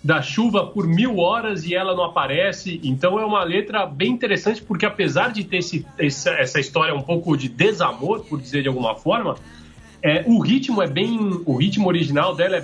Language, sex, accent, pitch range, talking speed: Portuguese, male, Brazilian, 145-200 Hz, 195 wpm